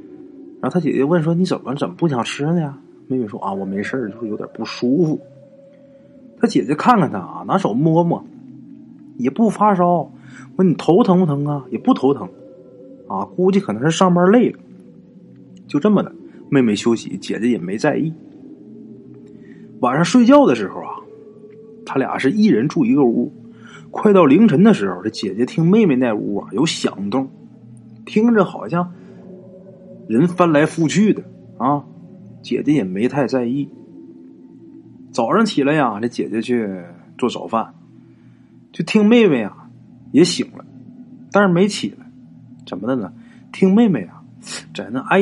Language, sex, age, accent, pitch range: Chinese, male, 30-49, native, 140-230 Hz